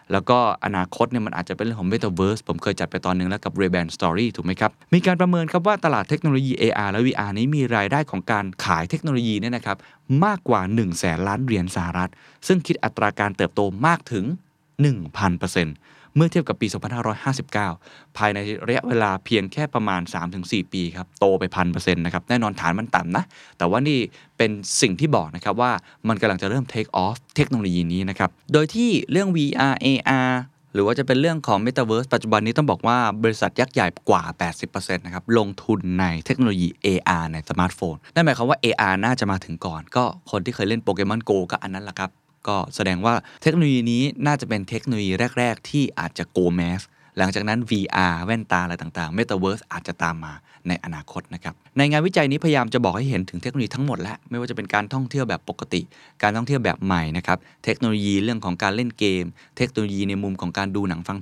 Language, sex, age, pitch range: Thai, male, 20-39, 95-125 Hz